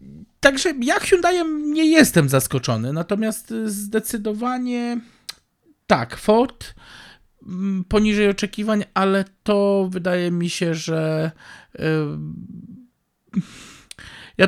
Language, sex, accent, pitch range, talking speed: Polish, male, native, 135-200 Hz, 85 wpm